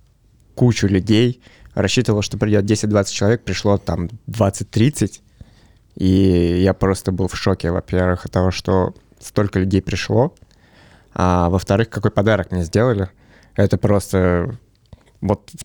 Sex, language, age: male, Russian, 20-39